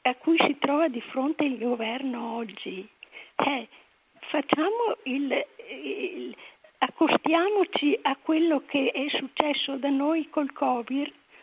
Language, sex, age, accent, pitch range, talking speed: Italian, female, 50-69, native, 245-295 Hz, 120 wpm